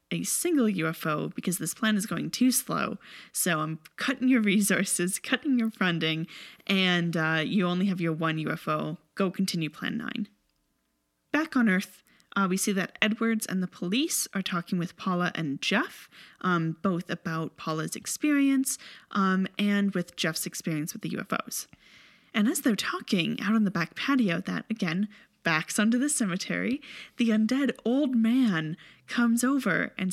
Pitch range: 175-235 Hz